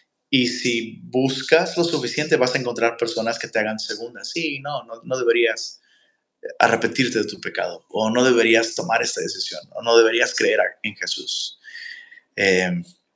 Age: 30-49